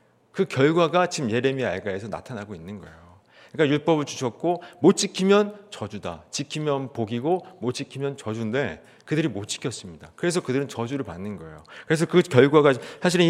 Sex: male